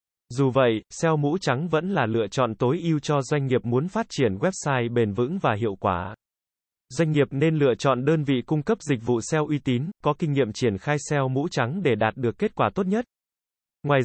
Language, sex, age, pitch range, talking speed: Vietnamese, male, 20-39, 125-160 Hz, 225 wpm